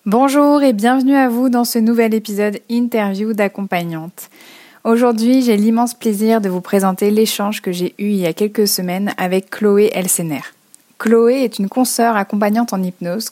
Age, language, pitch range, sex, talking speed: 20-39, French, 195-235 Hz, female, 165 wpm